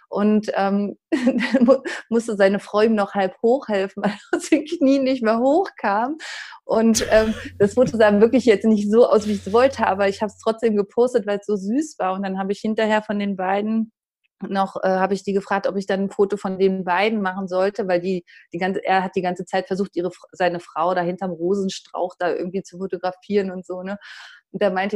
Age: 20-39